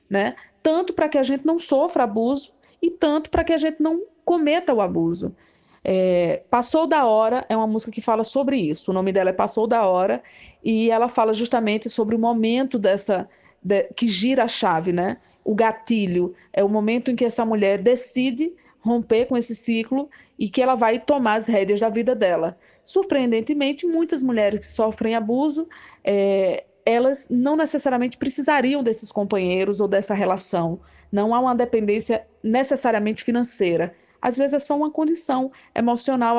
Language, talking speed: Portuguese, 170 wpm